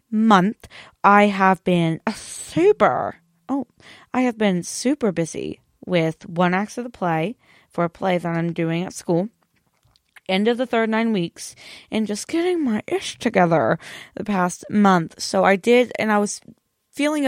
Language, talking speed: English, 165 wpm